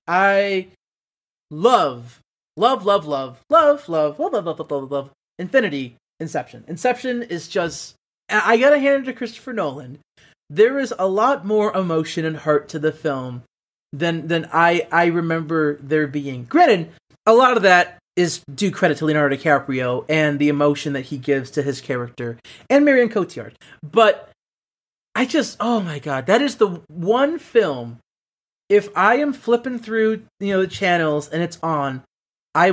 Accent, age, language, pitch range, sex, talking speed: American, 30-49, English, 145-205 Hz, male, 160 wpm